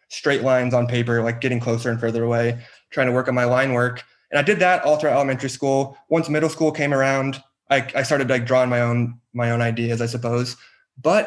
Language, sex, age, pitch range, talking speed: English, male, 20-39, 120-145 Hz, 230 wpm